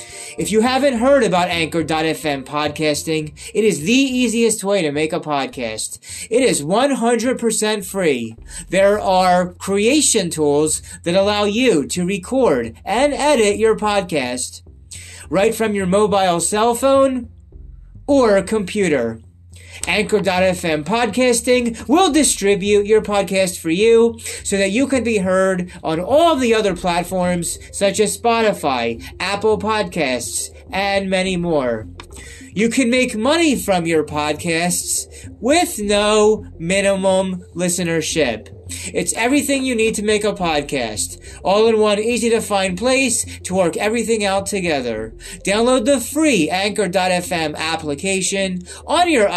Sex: male